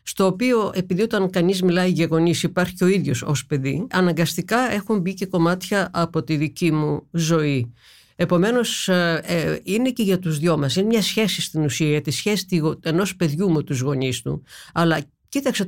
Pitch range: 160-210 Hz